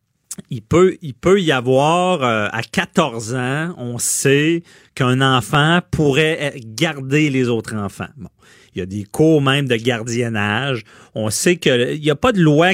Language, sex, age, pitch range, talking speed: French, male, 40-59, 120-160 Hz, 180 wpm